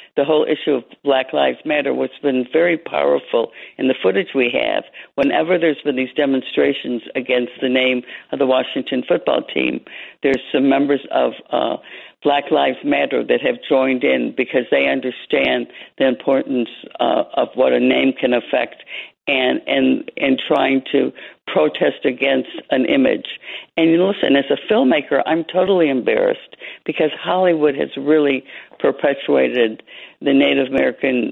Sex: female